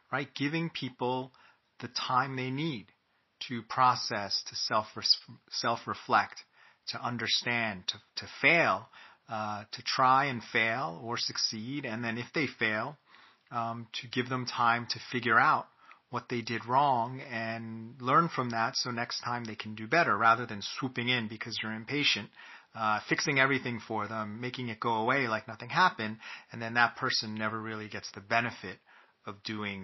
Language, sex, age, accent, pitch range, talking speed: English, male, 30-49, American, 110-130 Hz, 165 wpm